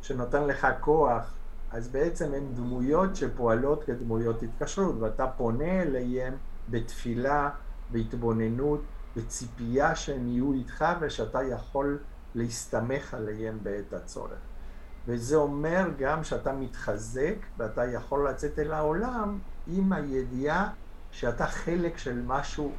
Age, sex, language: 50-69, male, Hebrew